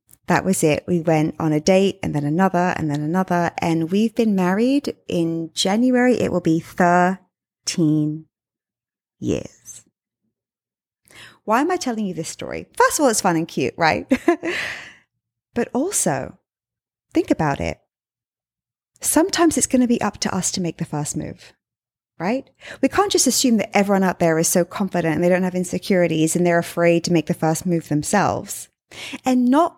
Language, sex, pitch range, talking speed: English, female, 170-230 Hz, 175 wpm